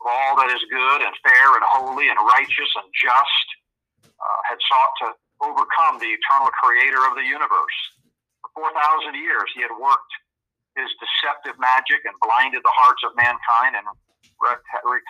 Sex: male